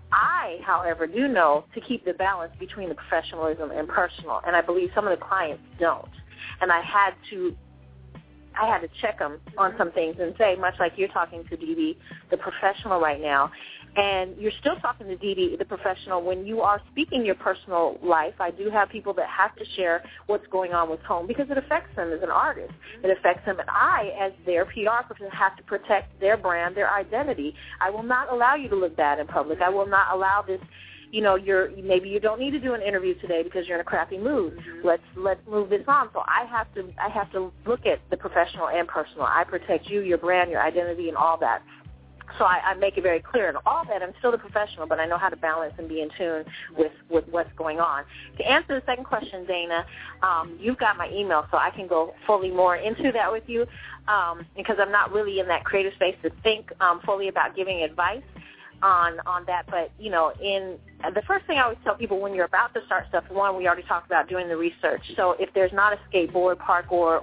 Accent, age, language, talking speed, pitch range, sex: American, 30-49, English, 230 wpm, 170-205 Hz, female